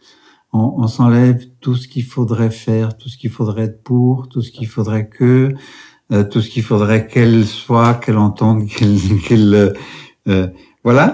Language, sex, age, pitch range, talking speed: French, male, 60-79, 105-130 Hz, 170 wpm